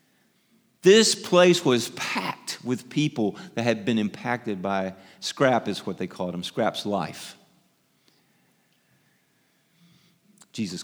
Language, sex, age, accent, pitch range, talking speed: English, male, 40-59, American, 115-155 Hz, 110 wpm